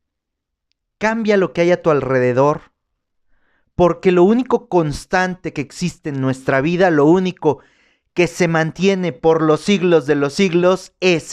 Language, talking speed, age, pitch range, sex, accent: Spanish, 150 wpm, 40-59, 155-210 Hz, male, Mexican